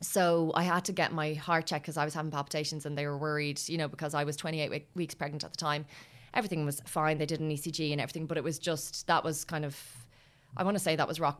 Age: 20-39